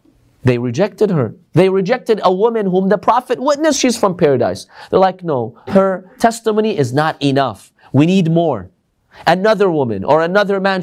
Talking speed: 165 wpm